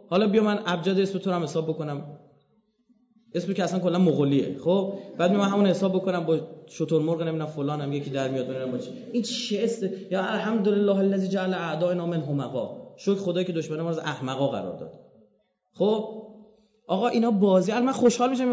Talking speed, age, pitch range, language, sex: 175 wpm, 30-49, 160-230 Hz, Persian, male